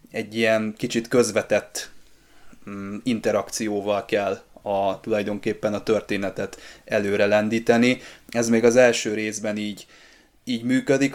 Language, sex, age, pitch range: Hungarian, male, 20-39, 105-115 Hz